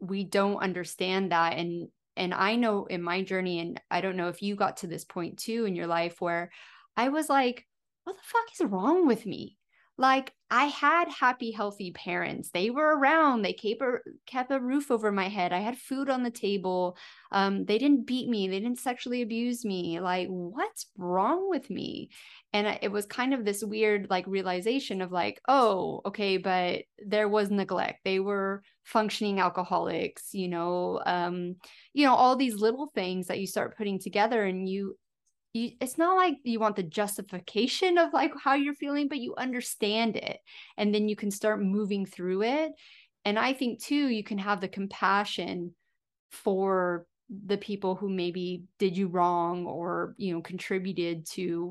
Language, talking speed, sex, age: English, 185 wpm, female, 20-39